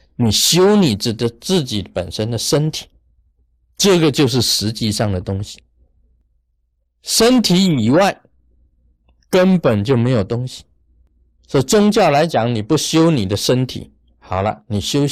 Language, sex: Chinese, male